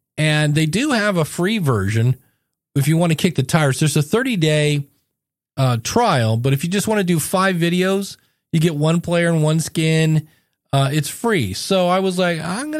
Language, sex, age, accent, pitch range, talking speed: English, male, 40-59, American, 135-175 Hz, 200 wpm